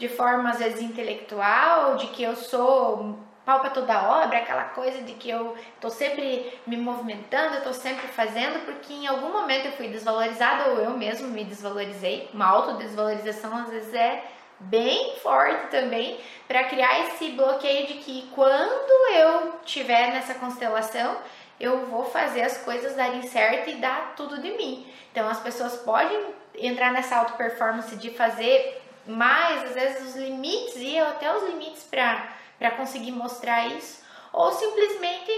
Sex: female